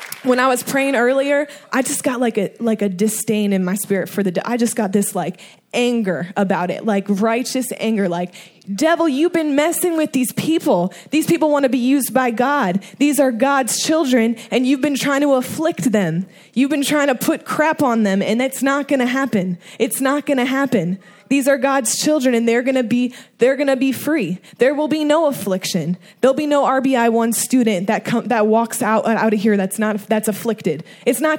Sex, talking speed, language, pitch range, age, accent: female, 220 wpm, English, 205-250 Hz, 10-29, American